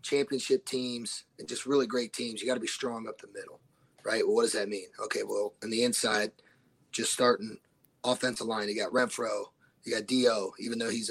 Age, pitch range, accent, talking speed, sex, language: 30-49, 120-145 Hz, American, 210 wpm, male, English